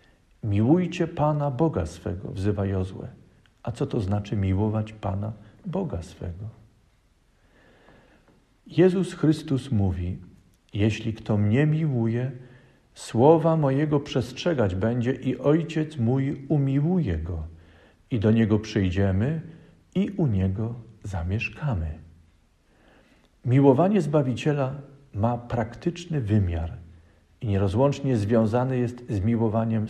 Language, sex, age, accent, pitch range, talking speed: Polish, male, 50-69, native, 100-140 Hz, 100 wpm